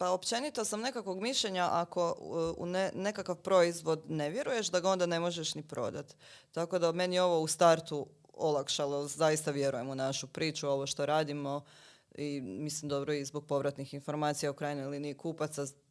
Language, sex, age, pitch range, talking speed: Croatian, female, 20-39, 145-170 Hz, 175 wpm